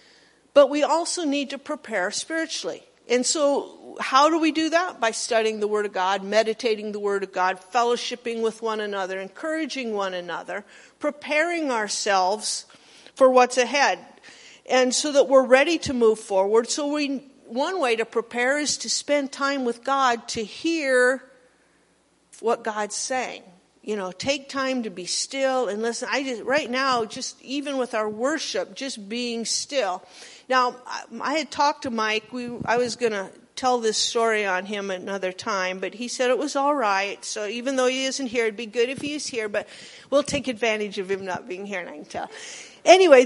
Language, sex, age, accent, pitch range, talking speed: English, female, 50-69, American, 215-275 Hz, 185 wpm